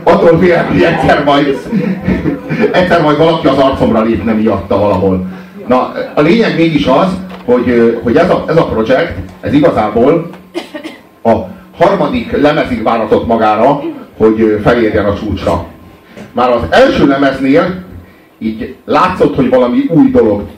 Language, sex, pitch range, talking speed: Hungarian, male, 110-175 Hz, 135 wpm